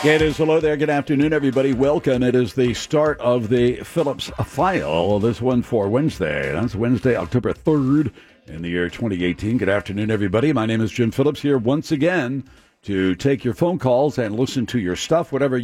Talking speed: 190 wpm